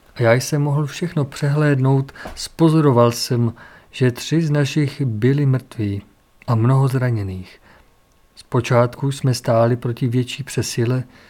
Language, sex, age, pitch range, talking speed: Czech, male, 50-69, 120-140 Hz, 115 wpm